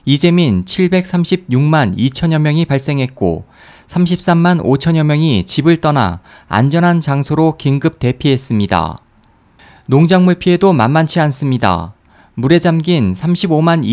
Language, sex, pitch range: Korean, male, 125-175 Hz